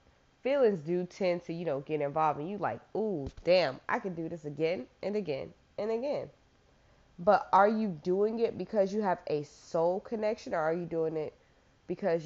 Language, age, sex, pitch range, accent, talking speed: English, 20-39, female, 155-200 Hz, American, 190 wpm